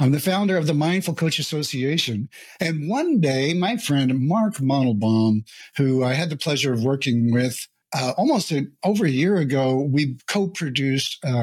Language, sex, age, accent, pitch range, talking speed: English, male, 60-79, American, 140-195 Hz, 175 wpm